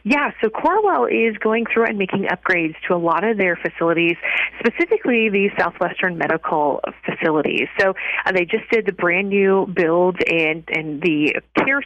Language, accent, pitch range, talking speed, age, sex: English, American, 165-205 Hz, 160 wpm, 30-49, female